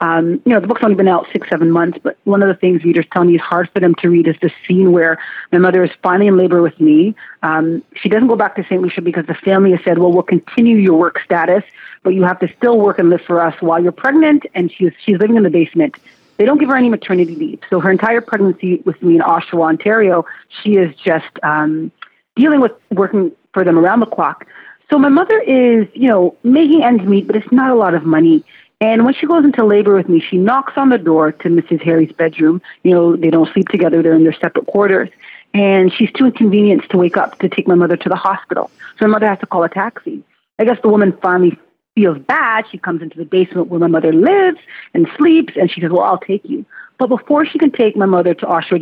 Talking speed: 250 wpm